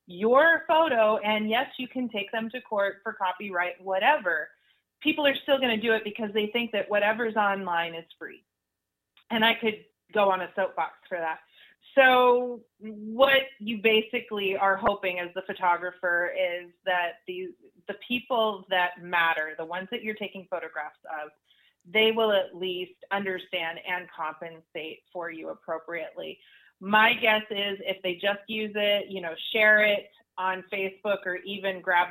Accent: American